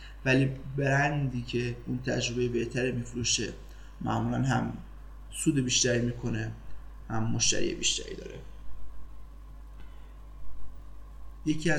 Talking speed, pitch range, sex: 85 wpm, 120-130 Hz, male